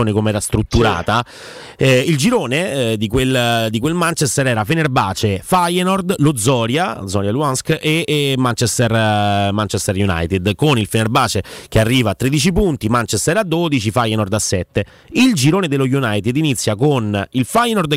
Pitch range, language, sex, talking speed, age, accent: 110-155 Hz, Italian, male, 155 wpm, 30-49, native